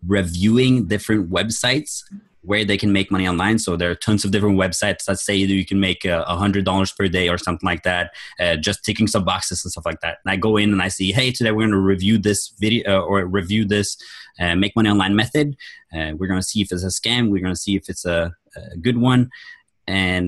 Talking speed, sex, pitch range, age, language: 250 wpm, male, 95-105 Hz, 20-39, English